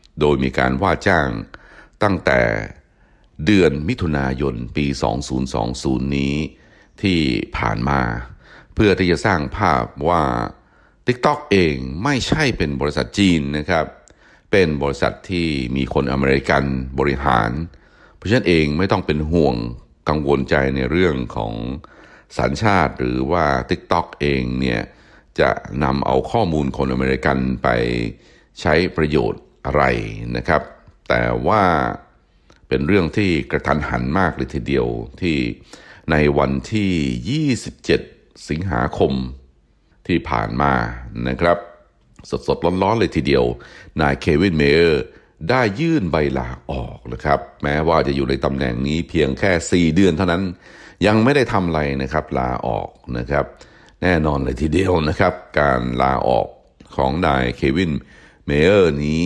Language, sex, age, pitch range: Thai, male, 60-79, 65-85 Hz